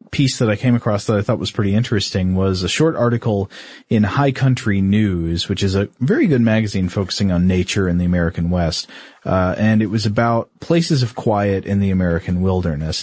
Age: 30-49